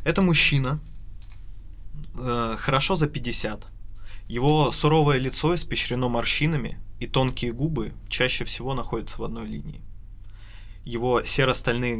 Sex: male